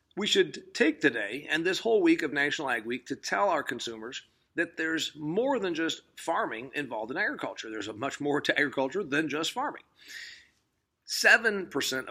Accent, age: American, 40-59